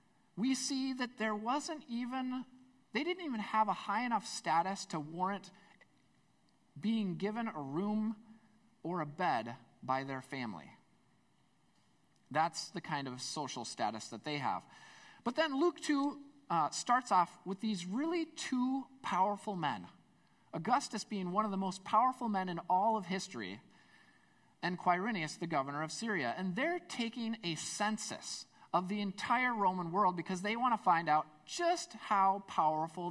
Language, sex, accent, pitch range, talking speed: English, male, American, 170-230 Hz, 155 wpm